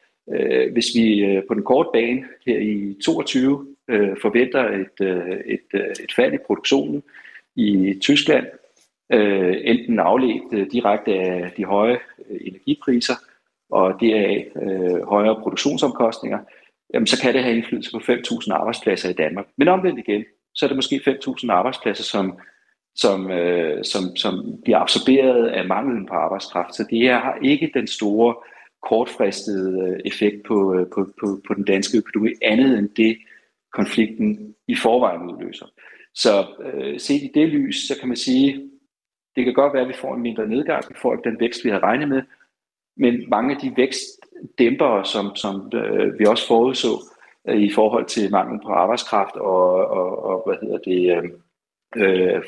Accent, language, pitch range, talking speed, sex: native, Danish, 100-135 Hz, 155 wpm, male